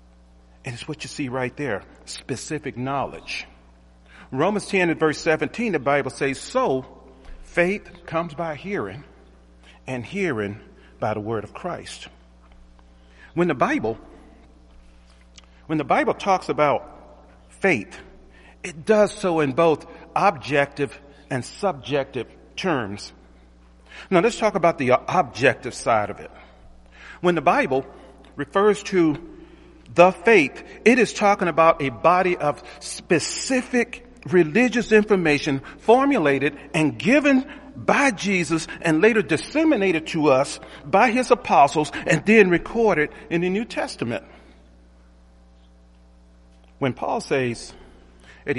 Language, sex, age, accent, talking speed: English, male, 40-59, American, 120 wpm